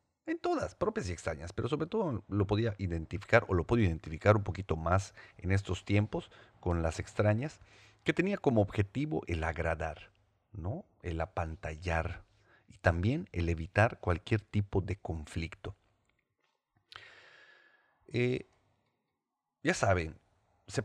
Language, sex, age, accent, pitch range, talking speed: Spanish, male, 40-59, Mexican, 90-125 Hz, 130 wpm